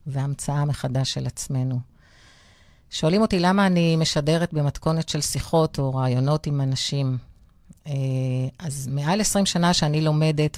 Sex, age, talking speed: female, 40-59, 125 wpm